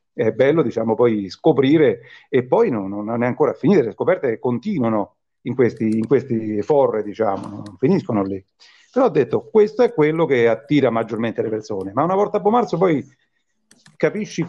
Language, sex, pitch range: Italian, male, 110-130 Hz